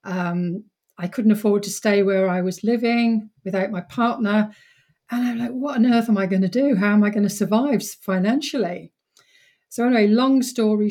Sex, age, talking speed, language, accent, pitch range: female, 40-59, 195 wpm, English, British, 190-230 Hz